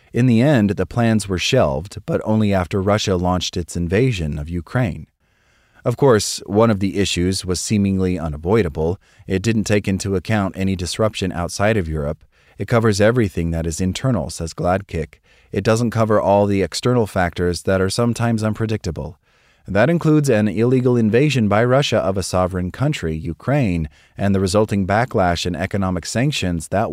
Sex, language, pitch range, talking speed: male, English, 90-110 Hz, 165 wpm